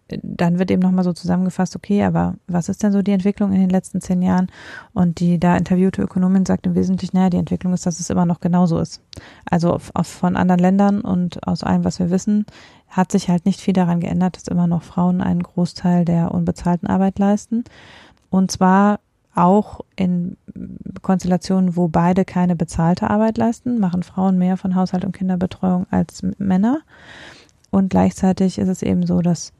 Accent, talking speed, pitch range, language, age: German, 185 wpm, 175-195 Hz, German, 30-49